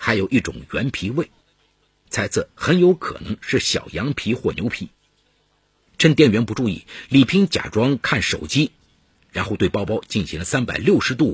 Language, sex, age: Chinese, male, 50-69